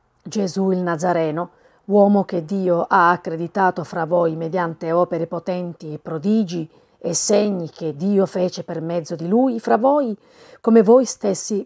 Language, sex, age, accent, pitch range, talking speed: Italian, female, 40-59, native, 175-225 Hz, 150 wpm